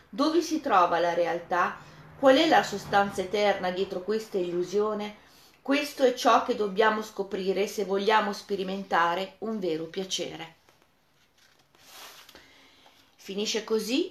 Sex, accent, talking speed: female, native, 115 wpm